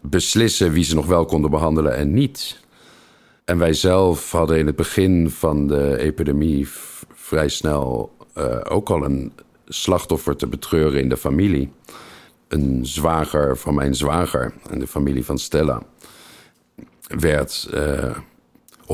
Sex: male